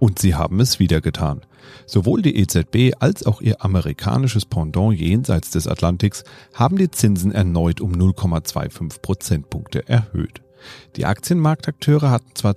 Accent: German